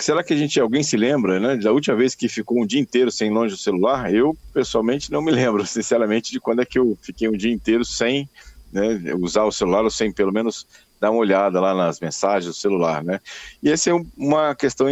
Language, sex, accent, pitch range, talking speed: Portuguese, male, Brazilian, 105-135 Hz, 235 wpm